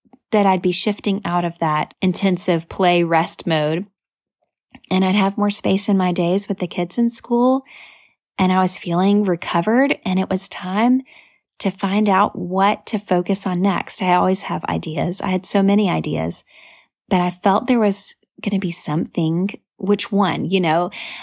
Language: English